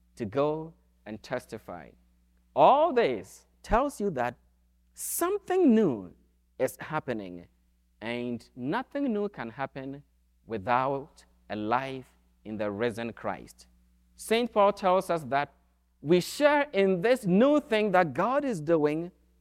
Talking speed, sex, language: 125 wpm, male, English